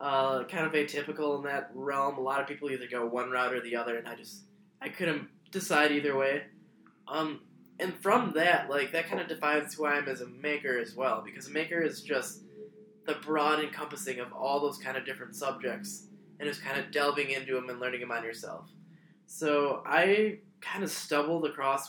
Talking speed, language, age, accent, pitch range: 210 wpm, English, 10-29, American, 140-175 Hz